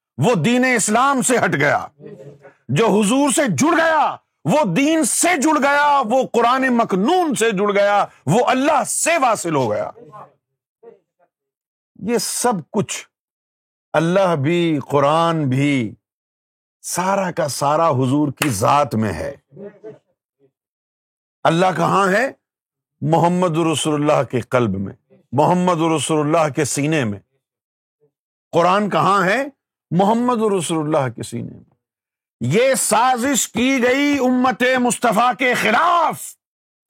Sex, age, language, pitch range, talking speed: male, 50-69, Urdu, 145-225 Hz, 120 wpm